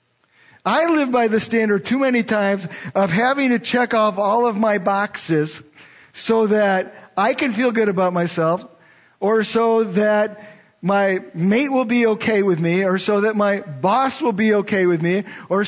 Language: English